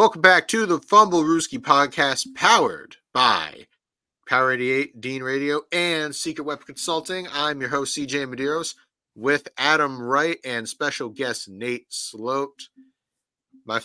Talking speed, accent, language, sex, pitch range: 135 wpm, American, English, male, 135-175 Hz